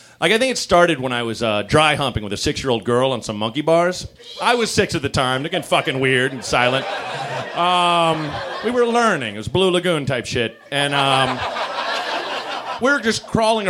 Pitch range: 125-180 Hz